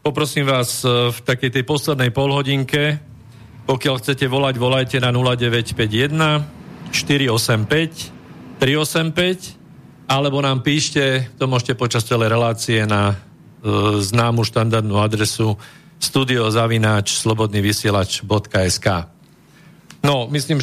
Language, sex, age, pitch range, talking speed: Slovak, male, 50-69, 115-145 Hz, 90 wpm